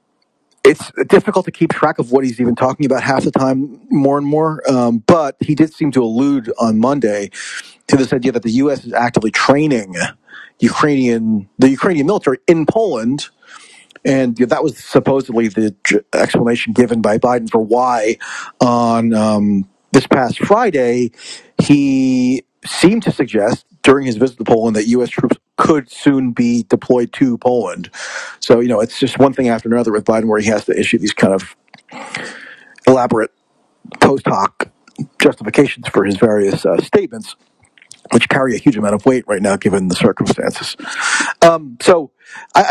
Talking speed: 165 wpm